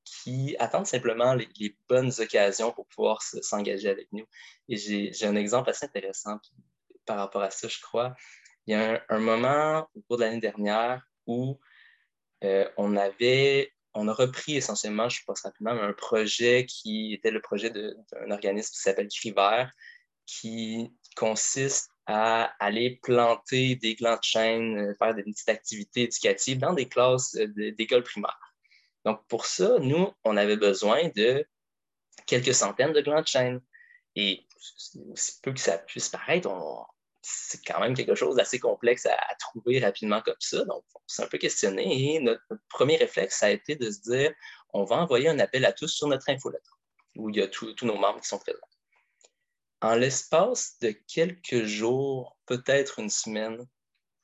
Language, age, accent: French, 20-39, Canadian